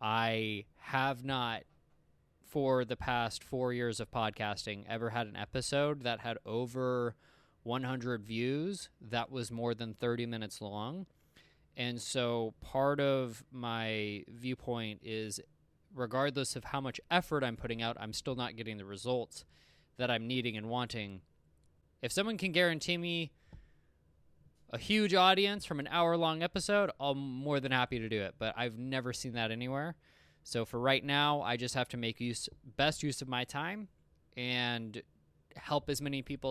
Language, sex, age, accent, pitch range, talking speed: English, male, 20-39, American, 110-140 Hz, 160 wpm